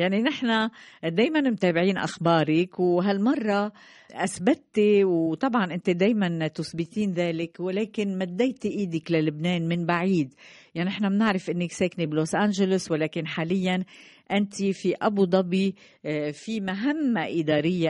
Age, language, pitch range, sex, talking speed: 50-69, Arabic, 165-210 Hz, female, 115 wpm